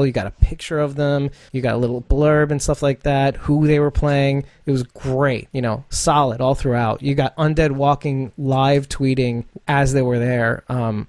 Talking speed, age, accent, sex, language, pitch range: 205 wpm, 30-49, American, male, English, 125-155 Hz